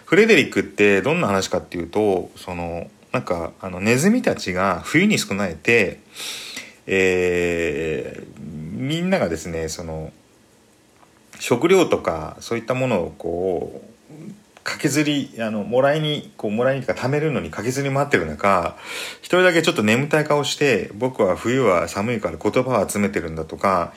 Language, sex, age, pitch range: Japanese, male, 40-59, 95-145 Hz